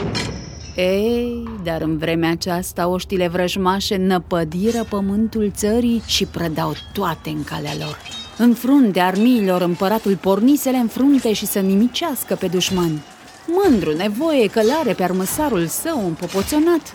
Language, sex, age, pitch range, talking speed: Romanian, female, 30-49, 180-250 Hz, 125 wpm